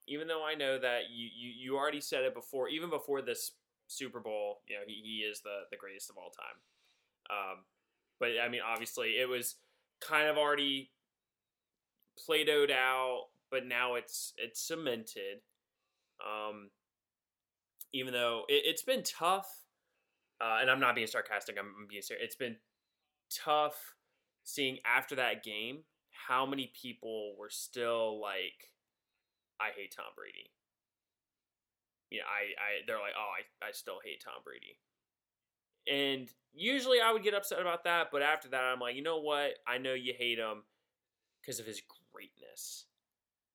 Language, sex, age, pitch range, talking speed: English, male, 20-39, 115-195 Hz, 160 wpm